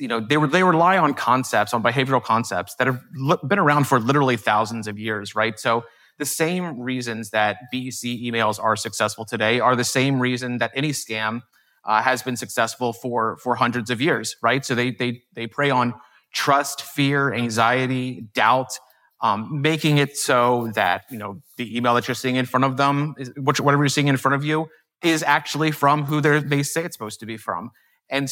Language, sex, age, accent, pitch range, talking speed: English, male, 30-49, American, 120-145 Hz, 200 wpm